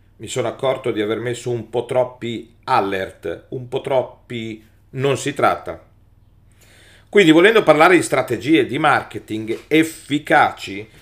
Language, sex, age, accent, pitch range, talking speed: Italian, male, 50-69, native, 105-180 Hz, 130 wpm